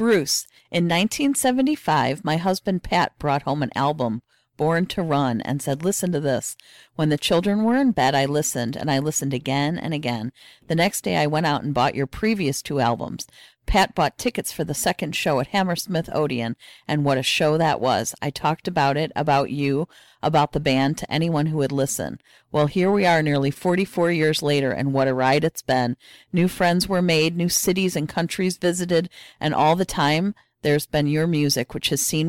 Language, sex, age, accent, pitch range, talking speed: English, female, 40-59, American, 135-165 Hz, 205 wpm